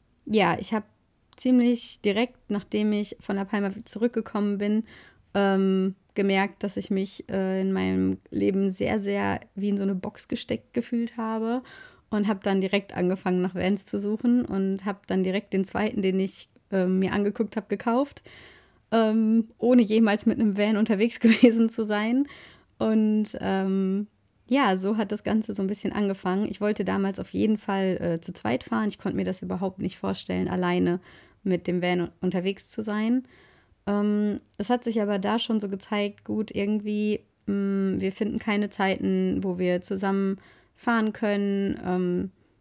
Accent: German